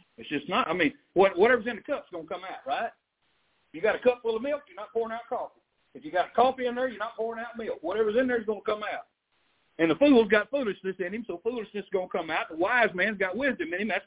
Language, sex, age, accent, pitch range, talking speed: English, male, 60-79, American, 215-300 Hz, 290 wpm